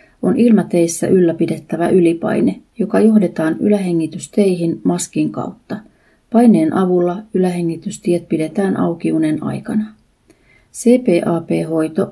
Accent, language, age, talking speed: native, Finnish, 30-49, 80 wpm